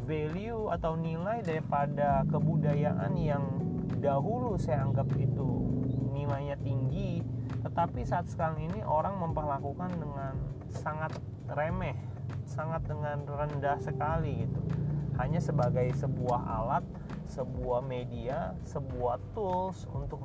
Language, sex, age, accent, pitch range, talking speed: Indonesian, male, 30-49, native, 120-155 Hz, 105 wpm